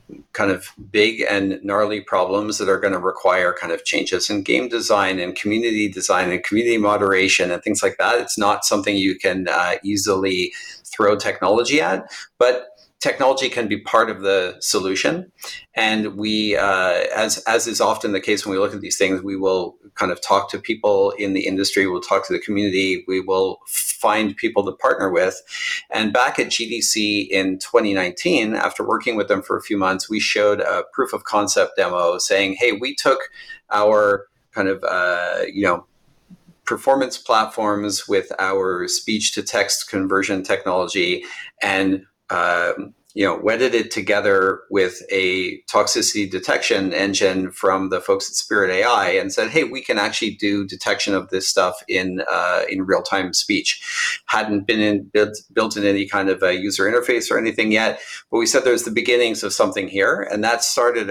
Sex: male